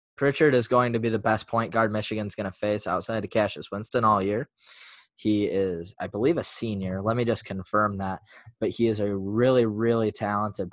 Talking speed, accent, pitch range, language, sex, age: 205 wpm, American, 100-120 Hz, English, male, 10-29